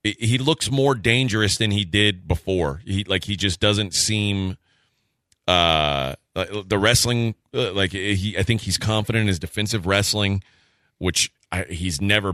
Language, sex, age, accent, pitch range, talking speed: English, male, 30-49, American, 90-110 Hz, 145 wpm